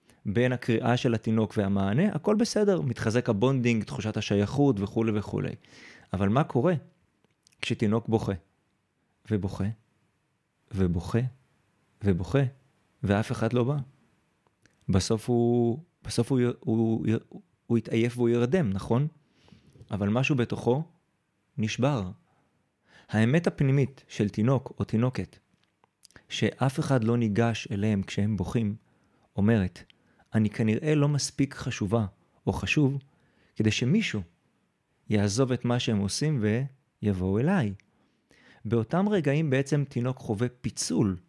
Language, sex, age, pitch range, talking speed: Hebrew, male, 30-49, 110-135 Hz, 110 wpm